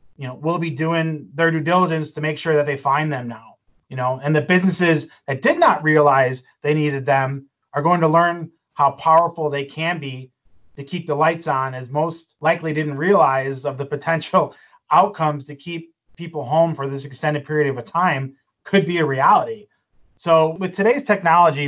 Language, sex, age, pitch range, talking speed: English, male, 30-49, 145-170 Hz, 195 wpm